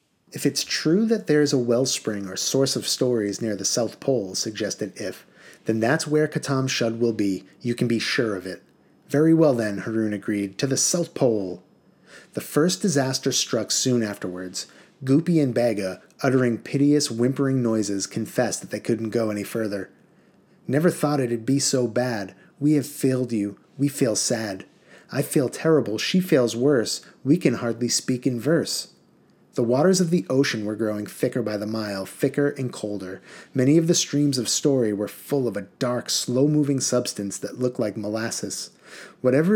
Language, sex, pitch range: English, male, 110-145 Hz